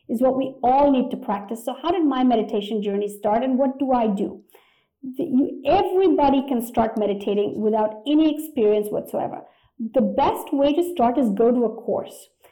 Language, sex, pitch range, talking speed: English, female, 230-310 Hz, 175 wpm